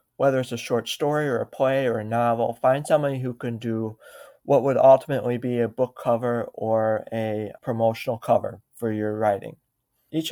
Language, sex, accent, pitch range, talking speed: English, male, American, 115-135 Hz, 180 wpm